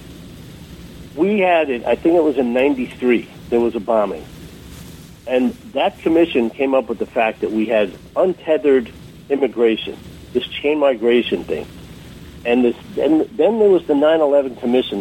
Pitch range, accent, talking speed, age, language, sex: 120-160 Hz, American, 150 wpm, 60-79, English, male